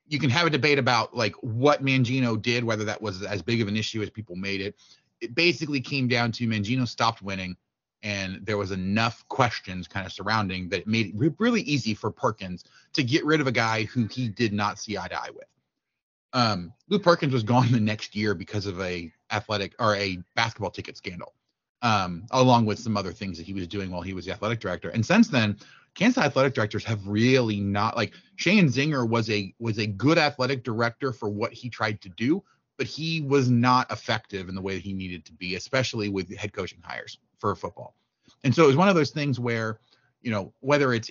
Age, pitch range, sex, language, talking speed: 30-49, 100-130 Hz, male, English, 225 wpm